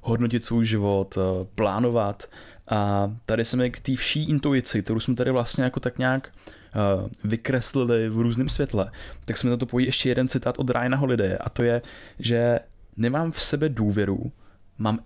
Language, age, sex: Czech, 20-39, male